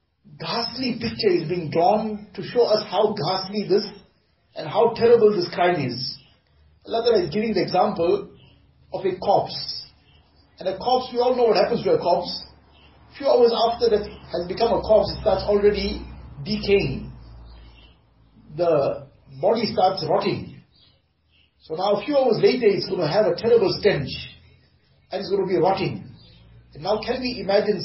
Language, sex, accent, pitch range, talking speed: English, male, Indian, 175-215 Hz, 165 wpm